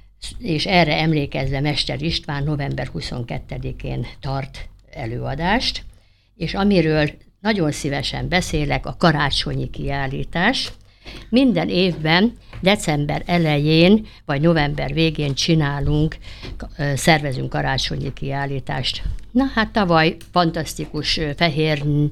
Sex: female